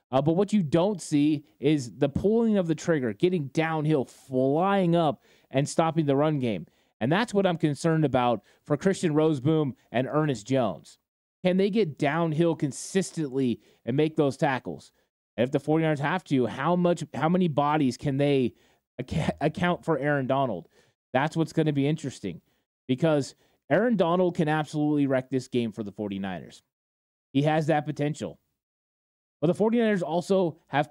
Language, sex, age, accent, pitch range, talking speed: English, male, 30-49, American, 135-165 Hz, 160 wpm